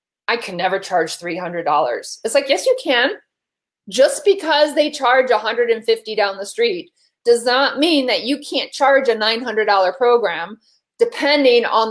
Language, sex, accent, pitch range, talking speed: English, female, American, 210-285 Hz, 150 wpm